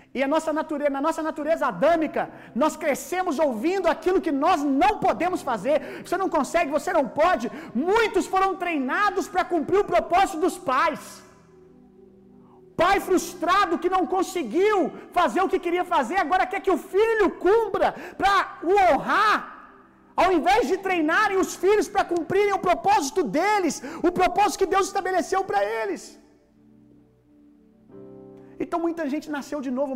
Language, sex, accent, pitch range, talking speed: Gujarati, male, Brazilian, 270-355 Hz, 150 wpm